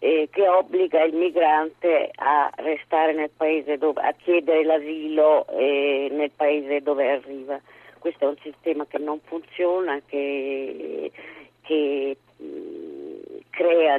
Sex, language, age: female, Italian, 40-59